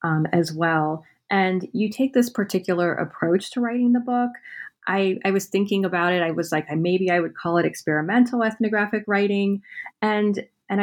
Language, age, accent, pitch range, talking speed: English, 30-49, American, 160-200 Hz, 175 wpm